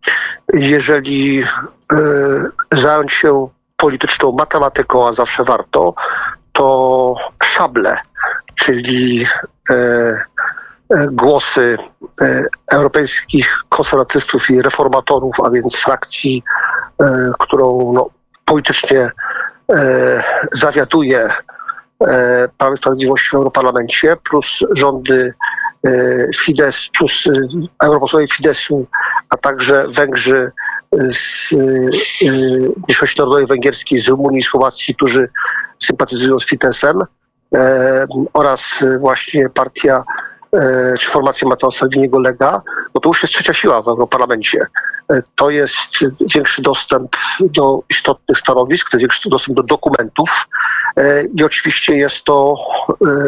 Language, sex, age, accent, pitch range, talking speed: Polish, male, 50-69, native, 130-145 Hz, 105 wpm